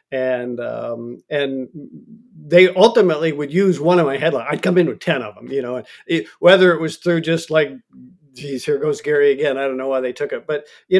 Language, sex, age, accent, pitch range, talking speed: English, male, 50-69, American, 130-175 Hz, 220 wpm